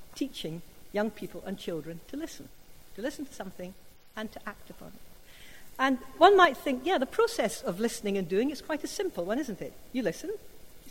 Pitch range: 185-270 Hz